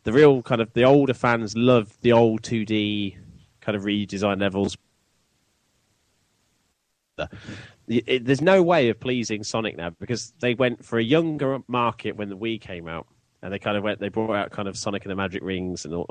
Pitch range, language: 95-120 Hz, English